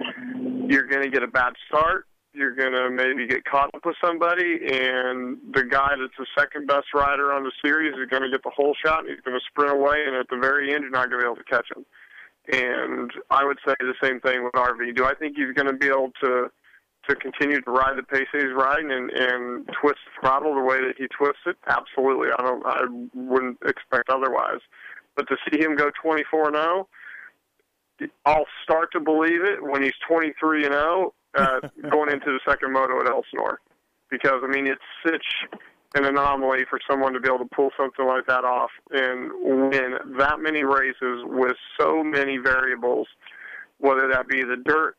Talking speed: 200 wpm